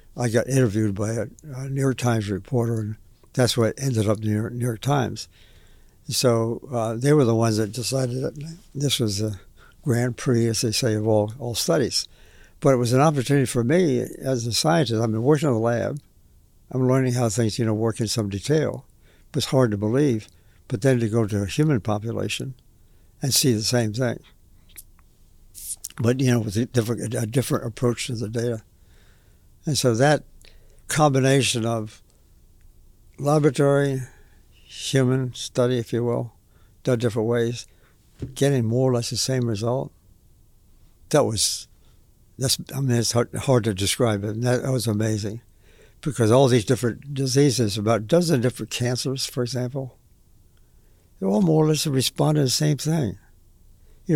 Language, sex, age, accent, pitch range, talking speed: English, male, 60-79, American, 105-130 Hz, 170 wpm